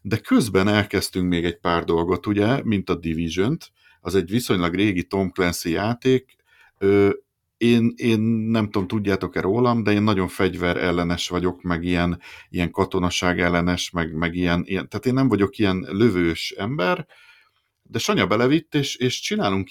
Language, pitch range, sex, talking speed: Hungarian, 95-115 Hz, male, 145 wpm